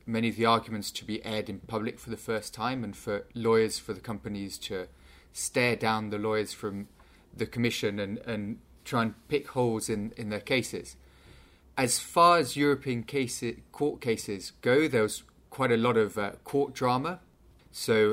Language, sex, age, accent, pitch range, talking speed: English, male, 30-49, British, 105-125 Hz, 180 wpm